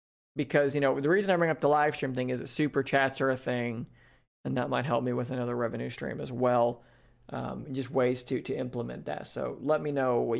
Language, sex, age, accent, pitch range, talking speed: English, male, 30-49, American, 125-165 Hz, 240 wpm